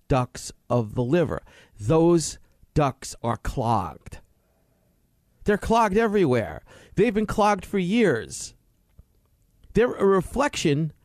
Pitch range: 115-170 Hz